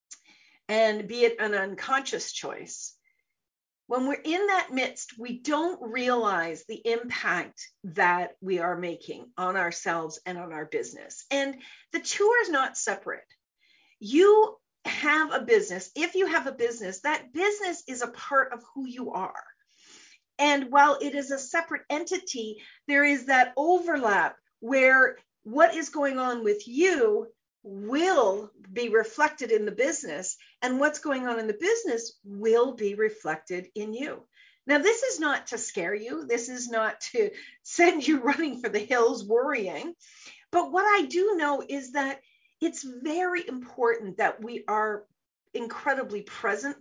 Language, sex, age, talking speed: English, female, 40-59, 155 wpm